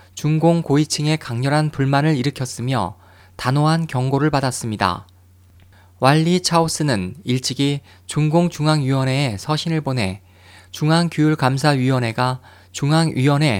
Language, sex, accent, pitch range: Korean, male, native, 100-155 Hz